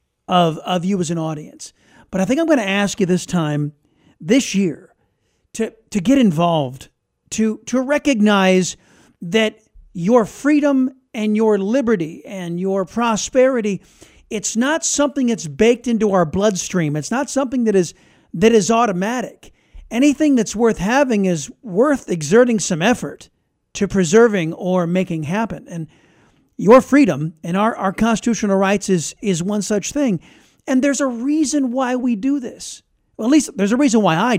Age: 50-69